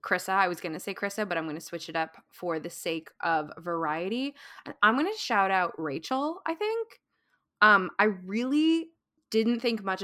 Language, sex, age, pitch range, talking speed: English, female, 20-39, 170-215 Hz, 195 wpm